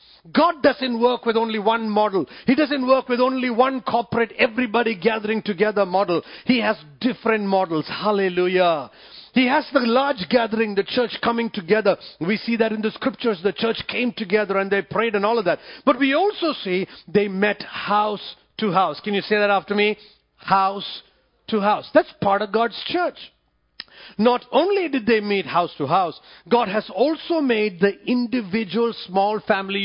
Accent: Indian